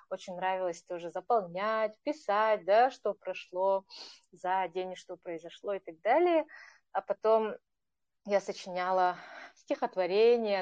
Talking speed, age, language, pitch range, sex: 115 wpm, 30-49, Russian, 185-235 Hz, female